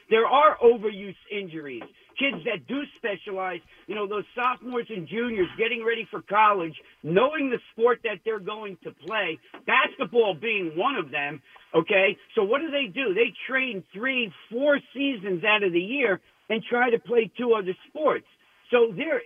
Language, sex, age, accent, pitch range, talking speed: English, male, 50-69, American, 195-255 Hz, 170 wpm